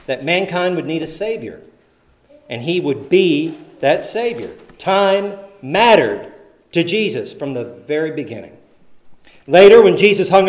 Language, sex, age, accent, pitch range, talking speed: English, male, 50-69, American, 165-220 Hz, 135 wpm